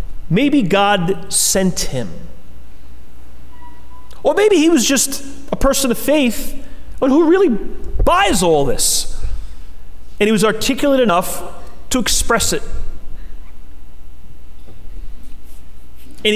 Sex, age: male, 30-49